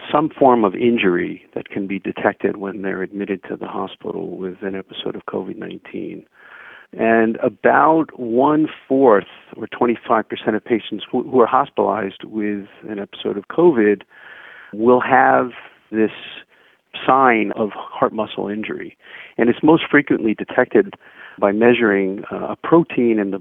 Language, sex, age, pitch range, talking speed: English, male, 50-69, 100-120 Hz, 135 wpm